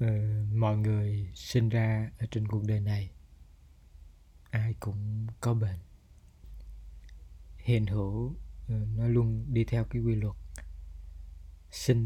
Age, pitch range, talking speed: 20-39, 80-115 Hz, 125 wpm